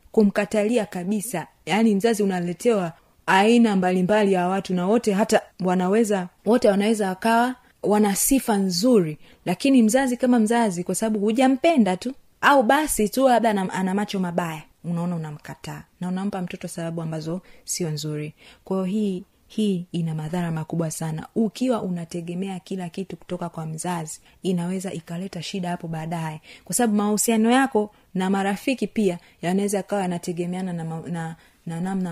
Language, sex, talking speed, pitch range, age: Swahili, female, 140 wpm, 175-225 Hz, 30-49